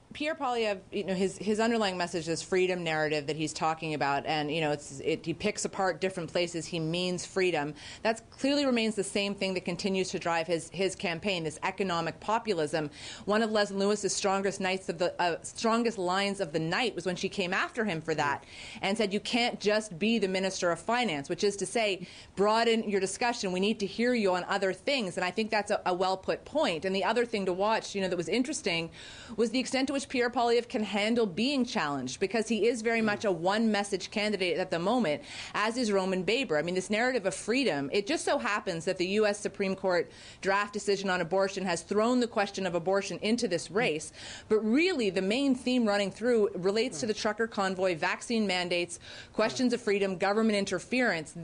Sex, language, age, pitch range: female, English, 30-49, 180-220 Hz